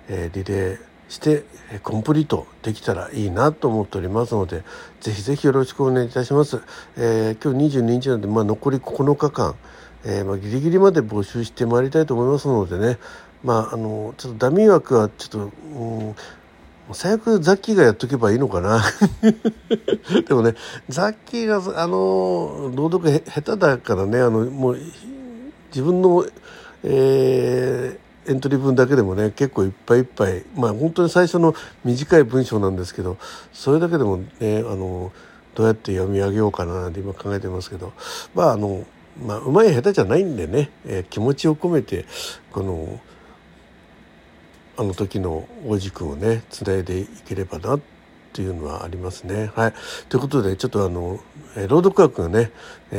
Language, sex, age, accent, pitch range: Japanese, male, 60-79, native, 100-145 Hz